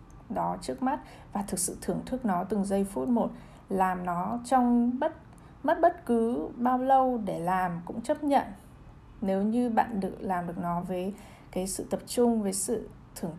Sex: female